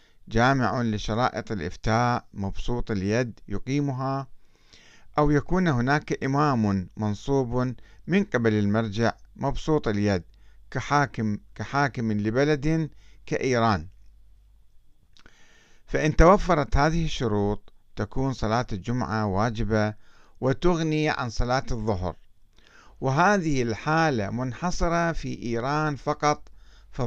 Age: 50-69